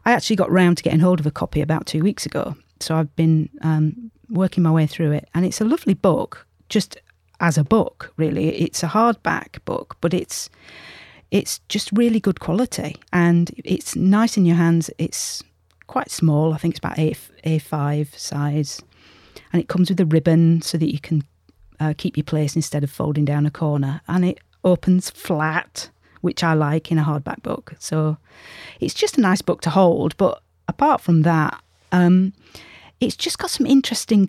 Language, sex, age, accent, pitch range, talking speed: English, female, 40-59, British, 150-185 Hz, 190 wpm